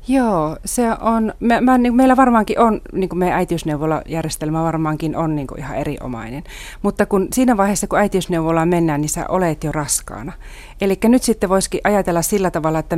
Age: 30-49